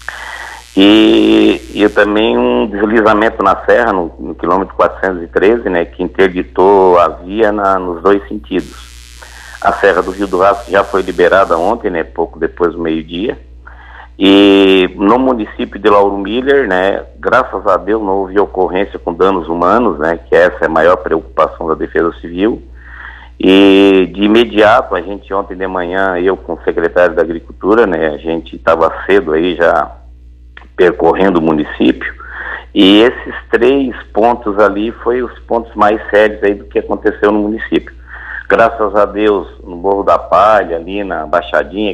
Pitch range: 80-105 Hz